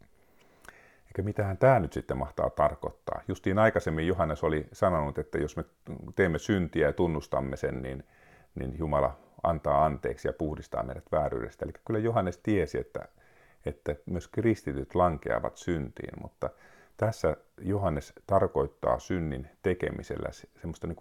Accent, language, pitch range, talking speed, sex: native, Finnish, 75-100 Hz, 125 wpm, male